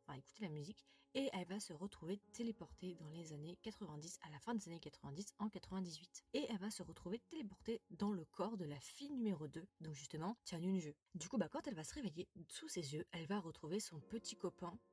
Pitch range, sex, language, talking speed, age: 165-210 Hz, female, French, 235 wpm, 20-39